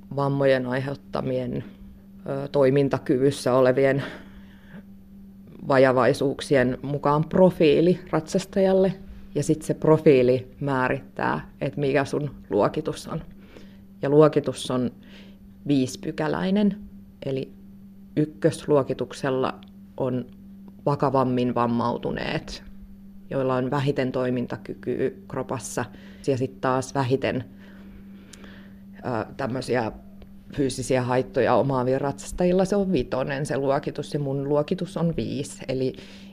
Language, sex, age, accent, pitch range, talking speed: Finnish, female, 20-39, native, 125-160 Hz, 85 wpm